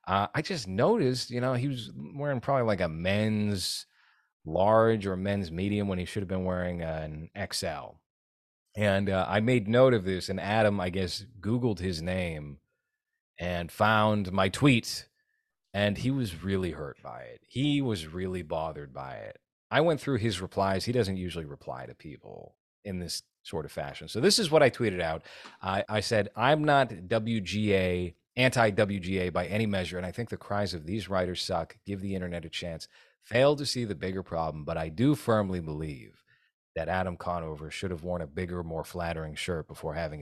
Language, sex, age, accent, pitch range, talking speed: English, male, 30-49, American, 90-115 Hz, 190 wpm